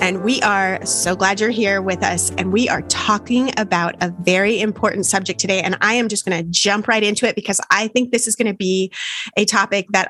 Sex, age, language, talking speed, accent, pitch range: female, 30-49, English, 240 wpm, American, 190-230 Hz